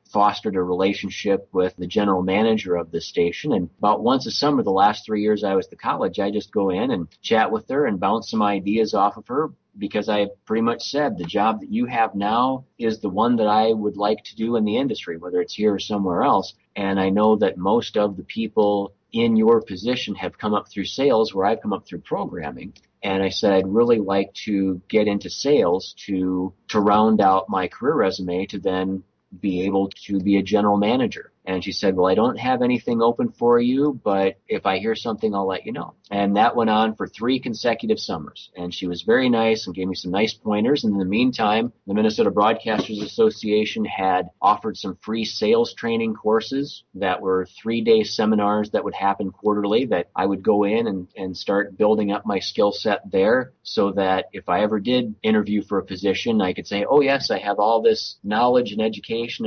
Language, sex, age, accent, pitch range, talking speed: English, male, 30-49, American, 95-115 Hz, 215 wpm